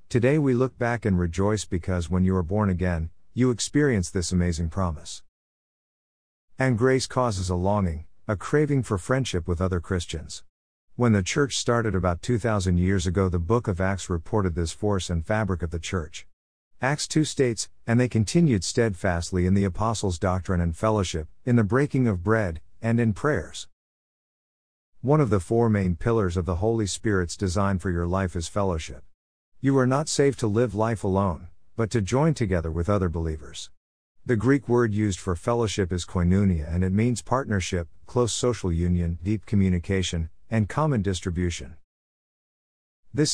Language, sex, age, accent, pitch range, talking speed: English, male, 50-69, American, 90-115 Hz, 170 wpm